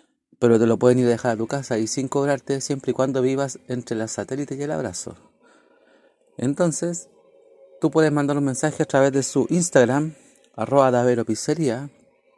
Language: Spanish